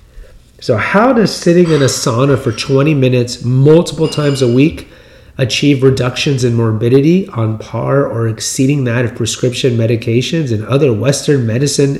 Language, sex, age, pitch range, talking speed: English, male, 30-49, 115-140 Hz, 150 wpm